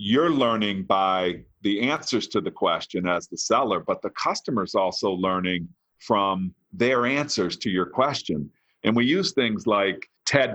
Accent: American